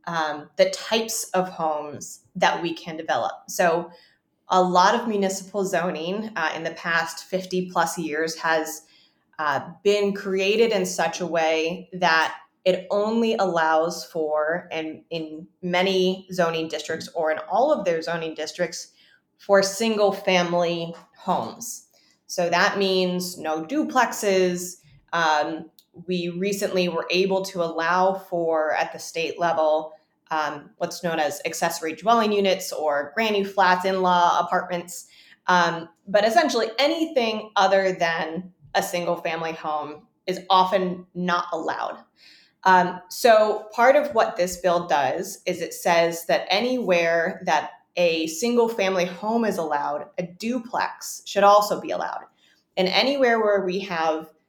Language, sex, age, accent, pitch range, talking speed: English, female, 20-39, American, 165-195 Hz, 140 wpm